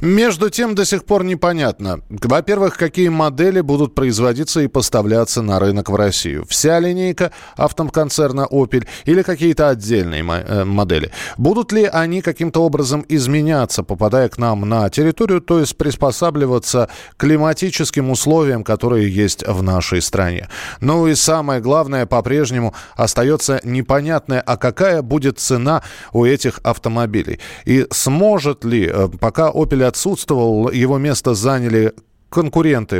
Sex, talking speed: male, 130 wpm